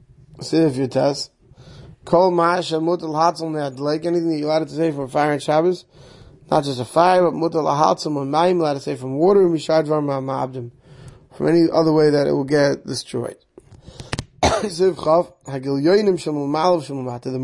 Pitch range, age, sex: 135-170 Hz, 30-49, male